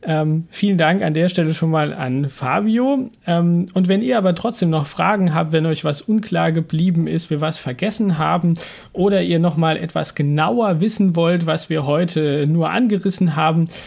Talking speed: 185 wpm